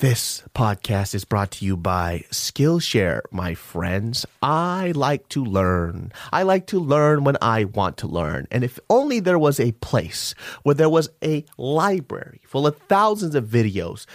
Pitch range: 95-145 Hz